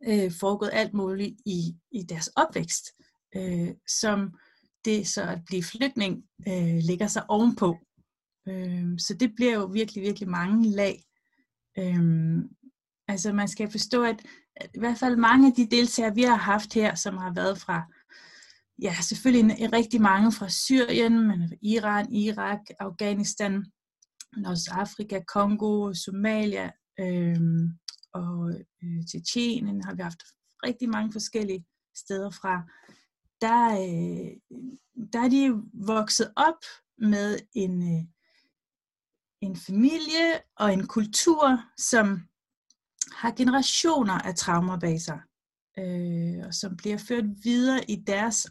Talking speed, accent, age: 125 wpm, native, 30-49